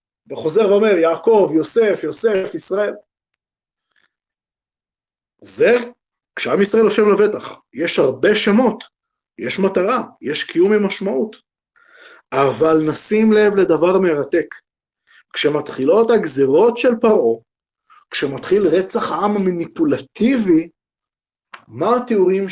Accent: native